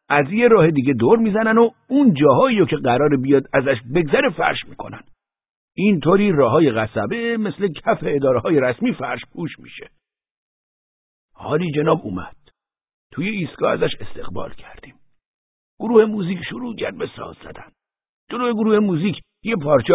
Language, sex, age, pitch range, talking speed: Persian, male, 60-79, 120-175 Hz, 135 wpm